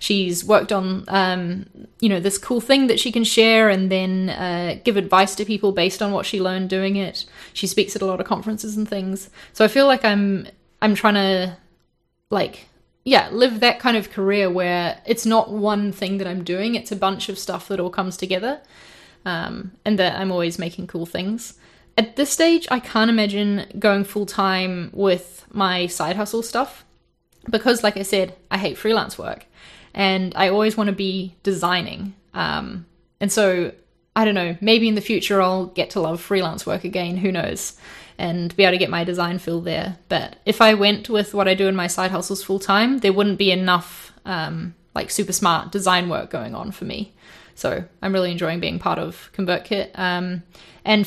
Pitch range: 185-210 Hz